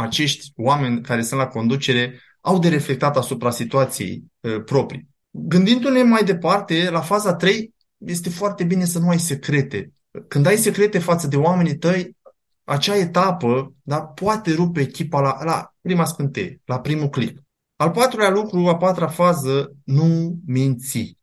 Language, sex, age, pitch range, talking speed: Romanian, male, 20-39, 130-175 Hz, 145 wpm